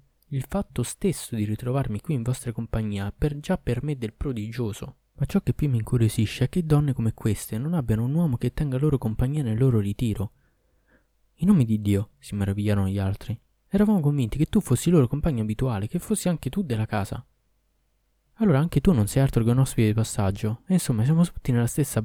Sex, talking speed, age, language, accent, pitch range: male, 205 wpm, 20-39, Italian, native, 105-140 Hz